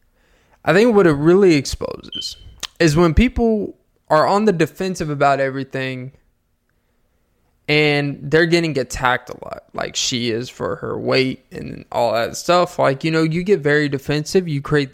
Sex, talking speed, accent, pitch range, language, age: male, 160 wpm, American, 130-155 Hz, English, 20-39